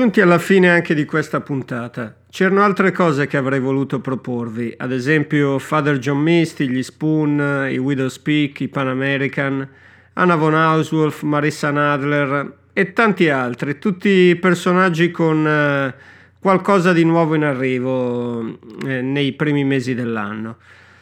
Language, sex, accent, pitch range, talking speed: Italian, male, native, 135-180 Hz, 140 wpm